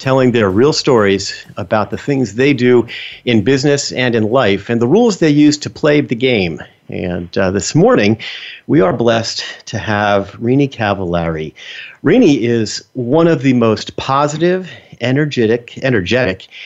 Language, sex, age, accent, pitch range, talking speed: English, male, 50-69, American, 105-135 Hz, 155 wpm